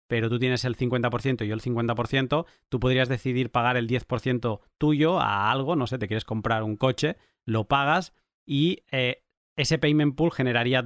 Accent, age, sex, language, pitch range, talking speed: Spanish, 30-49, male, Spanish, 115-135 Hz, 180 wpm